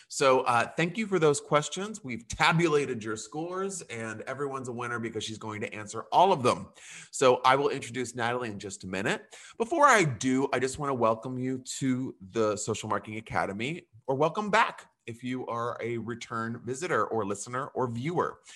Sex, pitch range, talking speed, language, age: male, 110-150 Hz, 190 wpm, English, 30-49